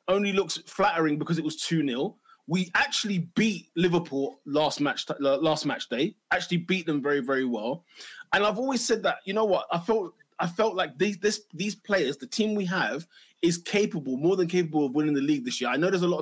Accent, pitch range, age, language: British, 150-205 Hz, 20-39, English